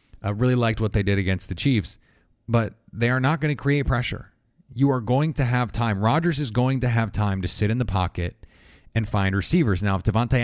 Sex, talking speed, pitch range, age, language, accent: male, 230 wpm, 100-120 Hz, 30-49, English, American